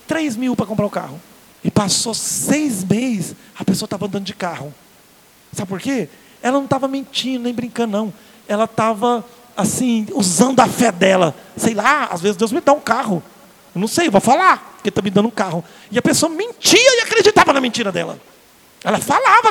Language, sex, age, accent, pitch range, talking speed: Portuguese, male, 40-59, Brazilian, 200-255 Hz, 195 wpm